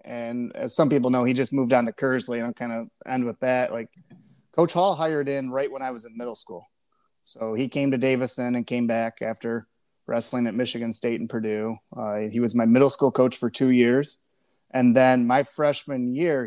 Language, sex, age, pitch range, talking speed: English, male, 30-49, 115-135 Hz, 220 wpm